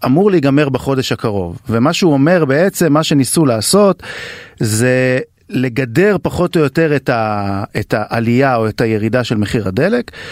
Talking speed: 140 wpm